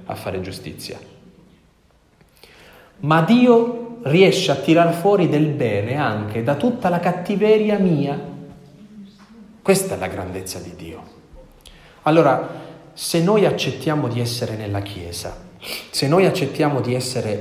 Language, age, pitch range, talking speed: Italian, 30-49, 110-170 Hz, 125 wpm